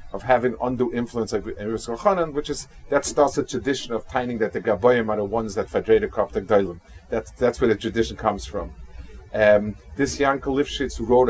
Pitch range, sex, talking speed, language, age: 105-130 Hz, male, 170 wpm, English, 40-59